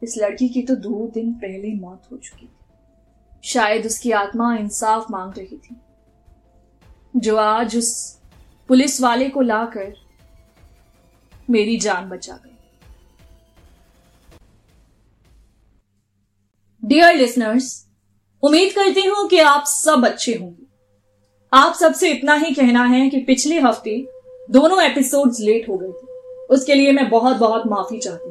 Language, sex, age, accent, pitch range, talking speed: Hindi, female, 20-39, native, 225-290 Hz, 130 wpm